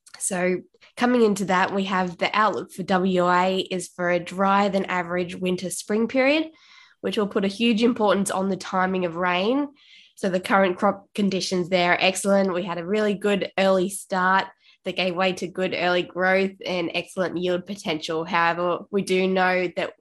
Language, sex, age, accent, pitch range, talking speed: English, female, 10-29, Australian, 175-195 Hz, 185 wpm